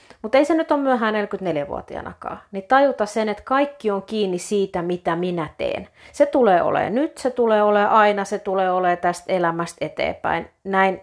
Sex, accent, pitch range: female, native, 165-210 Hz